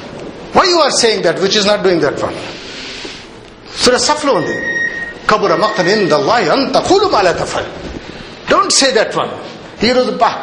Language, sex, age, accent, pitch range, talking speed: Telugu, male, 60-79, native, 155-235 Hz, 60 wpm